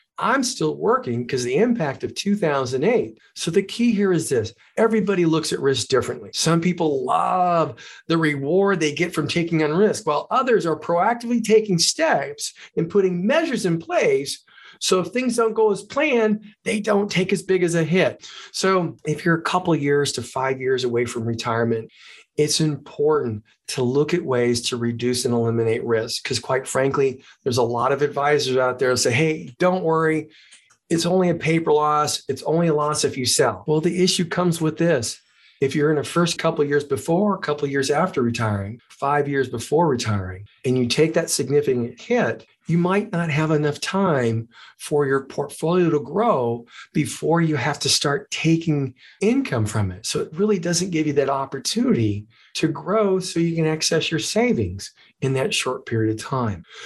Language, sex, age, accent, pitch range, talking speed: English, male, 40-59, American, 135-185 Hz, 190 wpm